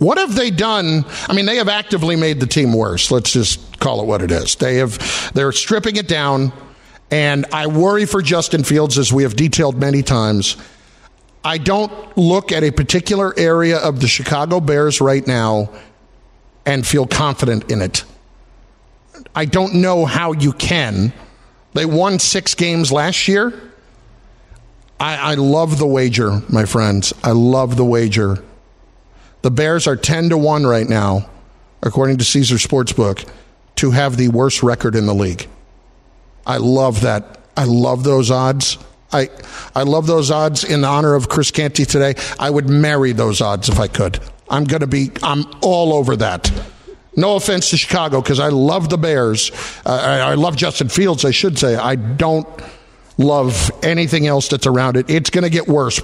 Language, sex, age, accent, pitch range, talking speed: English, male, 50-69, American, 125-160 Hz, 170 wpm